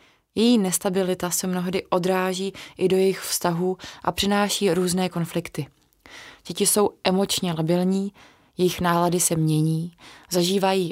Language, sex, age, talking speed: Czech, female, 20-39, 120 wpm